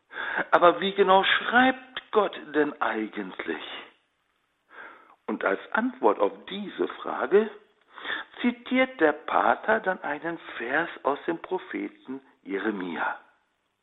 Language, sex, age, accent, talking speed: German, male, 60-79, German, 100 wpm